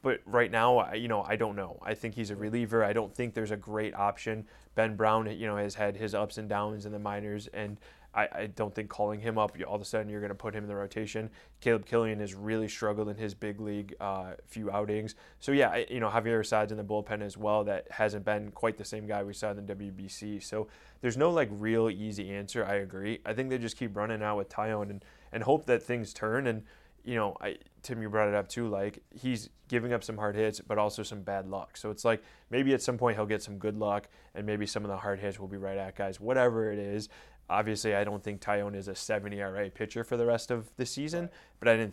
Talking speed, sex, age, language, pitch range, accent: 260 wpm, male, 20-39, English, 100-115 Hz, American